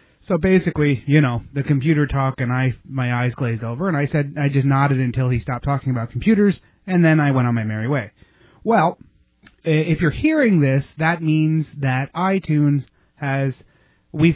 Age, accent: 30-49, American